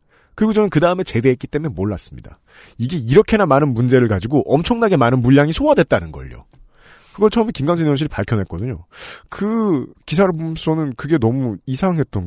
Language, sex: Korean, male